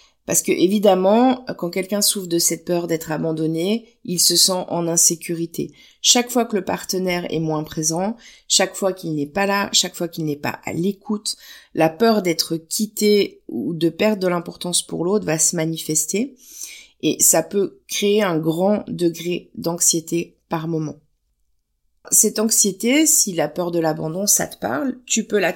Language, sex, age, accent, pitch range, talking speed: French, female, 30-49, French, 160-205 Hz, 175 wpm